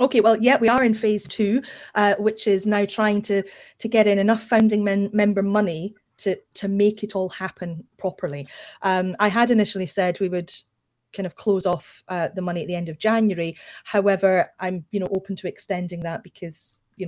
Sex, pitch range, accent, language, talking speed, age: female, 180-215 Hz, British, English, 205 wpm, 30-49